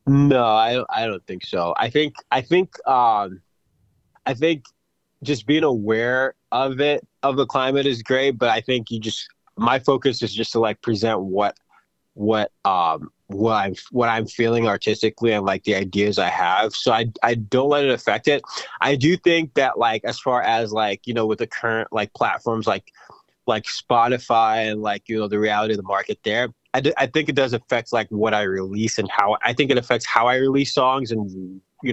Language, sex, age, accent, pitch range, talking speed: English, male, 20-39, American, 105-130 Hz, 205 wpm